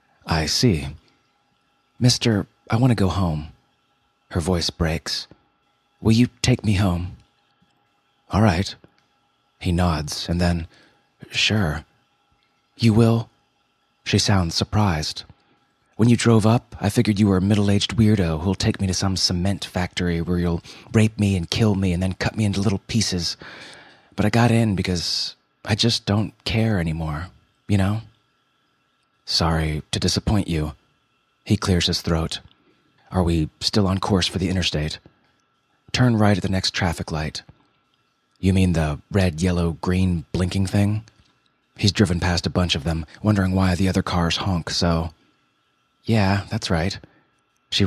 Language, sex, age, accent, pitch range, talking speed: English, male, 30-49, American, 85-110 Hz, 150 wpm